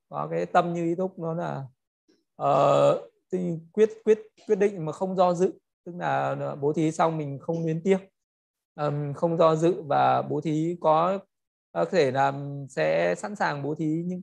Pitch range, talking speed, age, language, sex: 145-175 Hz, 185 wpm, 20-39, Vietnamese, male